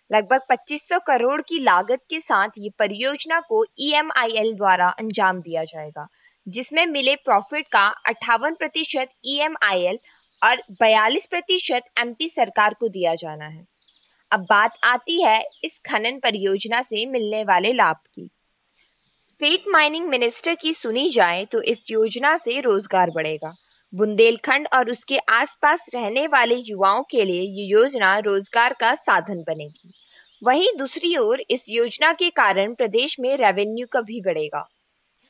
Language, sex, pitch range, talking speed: Hindi, female, 205-295 Hz, 140 wpm